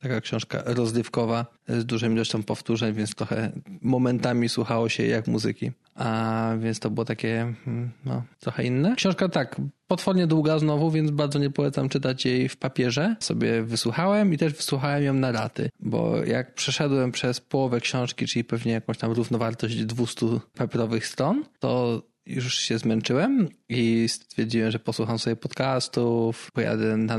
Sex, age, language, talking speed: male, 20-39, Polish, 150 wpm